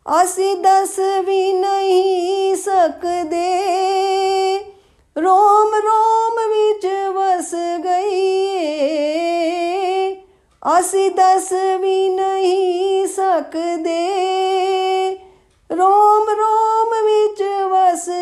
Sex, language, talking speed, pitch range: female, Punjabi, 60 wpm, 255-375 Hz